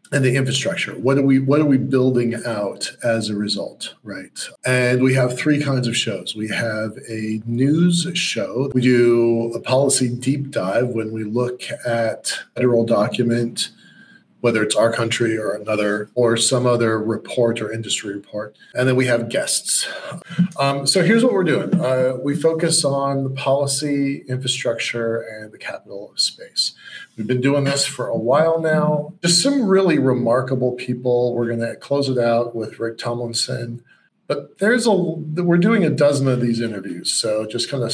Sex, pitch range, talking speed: male, 115-140 Hz, 175 wpm